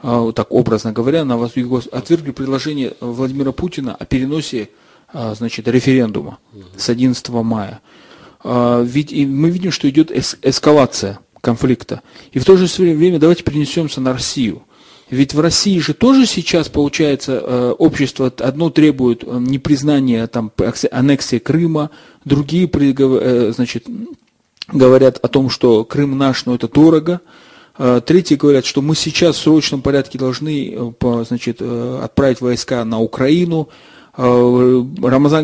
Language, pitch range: Russian, 125-150 Hz